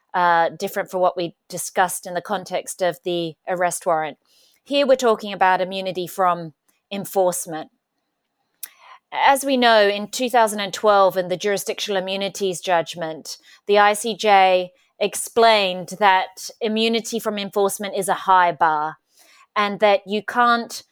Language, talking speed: English, 130 wpm